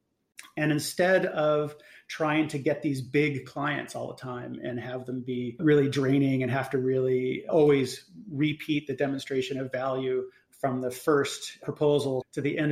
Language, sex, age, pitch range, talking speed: English, male, 30-49, 135-155 Hz, 165 wpm